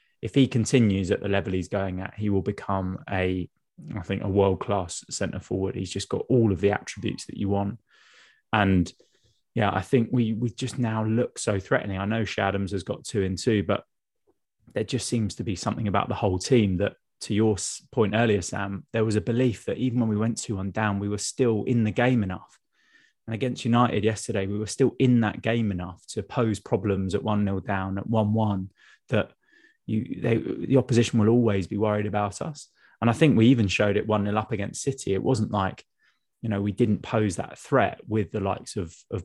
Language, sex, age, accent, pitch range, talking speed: English, male, 20-39, British, 95-115 Hz, 215 wpm